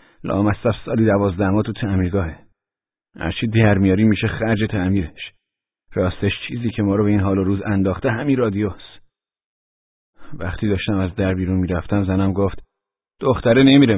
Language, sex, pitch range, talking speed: Persian, male, 95-110 Hz, 145 wpm